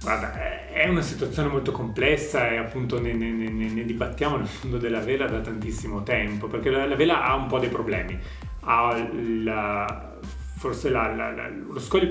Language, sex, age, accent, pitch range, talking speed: Italian, male, 30-49, native, 110-135 Hz, 180 wpm